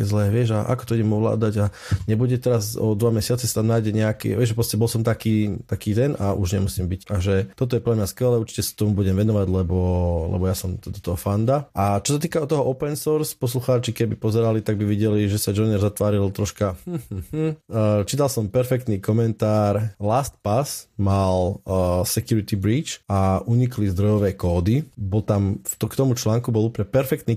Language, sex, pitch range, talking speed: Slovak, male, 100-120 Hz, 180 wpm